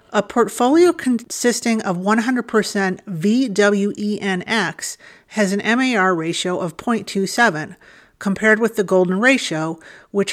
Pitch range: 180-220 Hz